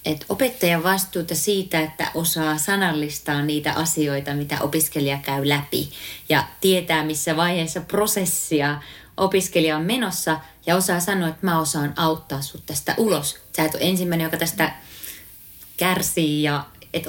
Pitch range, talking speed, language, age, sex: 150-185 Hz, 140 wpm, Finnish, 30-49, female